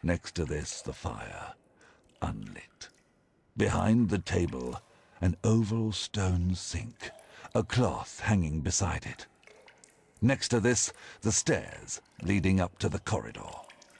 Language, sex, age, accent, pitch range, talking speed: Polish, male, 60-79, British, 90-115 Hz, 120 wpm